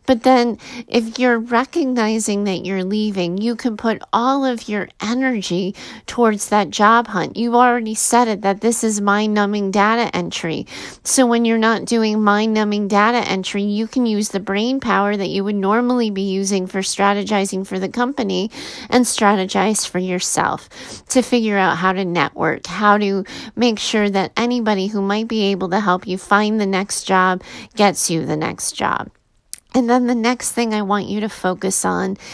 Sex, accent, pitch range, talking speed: female, American, 185-225 Hz, 180 wpm